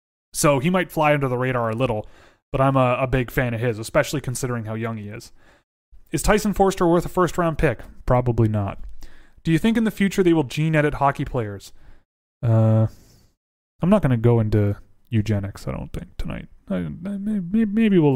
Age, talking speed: 30-49, 200 wpm